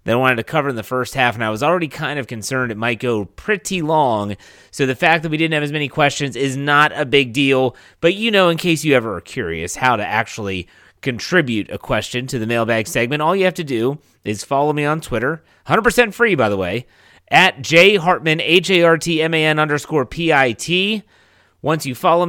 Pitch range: 115-160 Hz